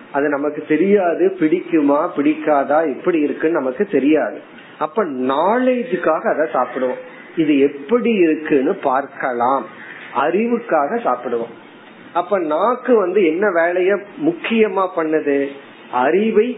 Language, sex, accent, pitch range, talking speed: Tamil, male, native, 145-210 Hz, 80 wpm